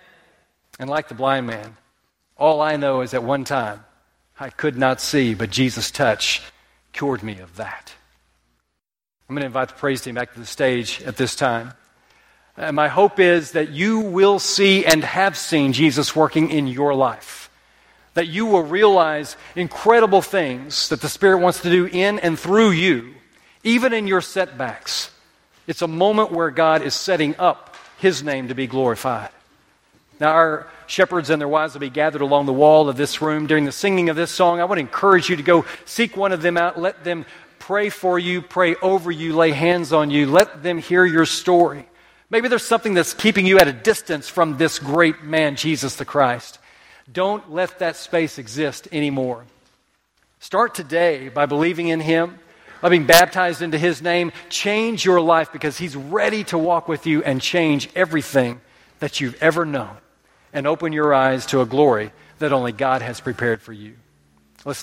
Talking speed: 185 wpm